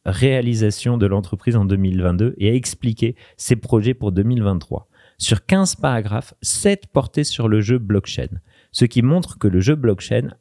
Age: 30-49